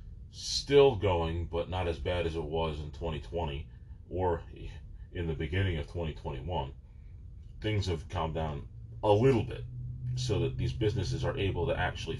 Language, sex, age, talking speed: English, male, 30-49, 155 wpm